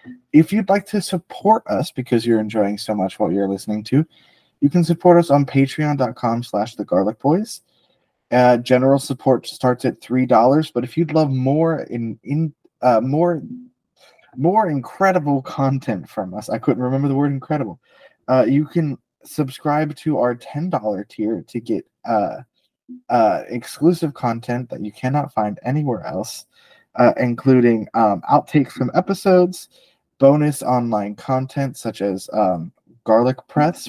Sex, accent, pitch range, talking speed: male, American, 110-155 Hz, 150 wpm